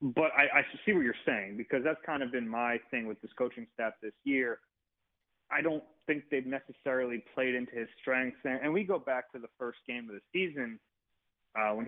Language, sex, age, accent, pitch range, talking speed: English, male, 30-49, American, 115-140 Hz, 215 wpm